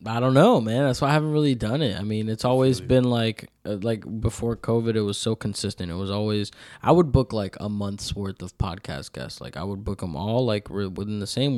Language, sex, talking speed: English, male, 245 wpm